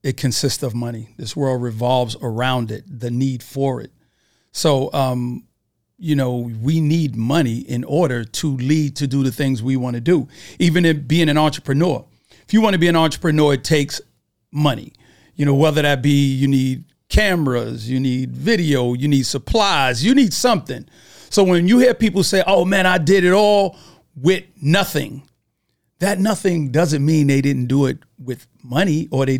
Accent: American